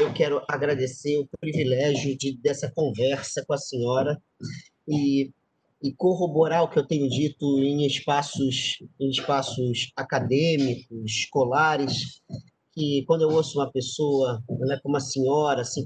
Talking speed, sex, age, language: 135 wpm, male, 40-59, Portuguese